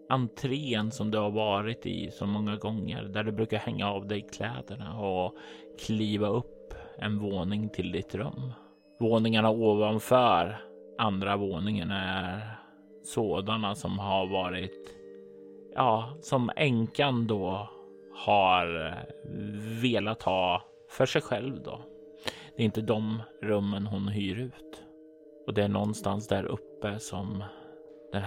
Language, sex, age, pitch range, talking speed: Swedish, male, 30-49, 100-120 Hz, 125 wpm